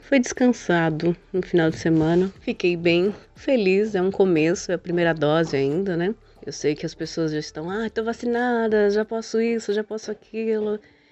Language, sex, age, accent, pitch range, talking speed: Portuguese, female, 30-49, Brazilian, 155-205 Hz, 185 wpm